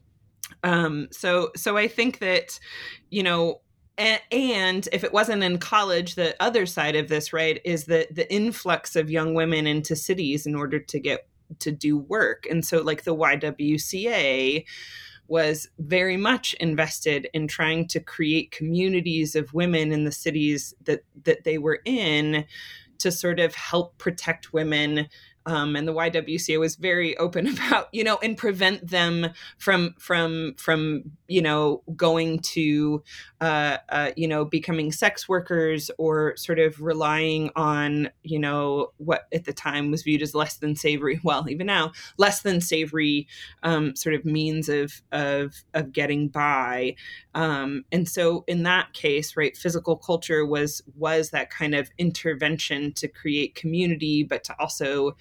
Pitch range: 150-175 Hz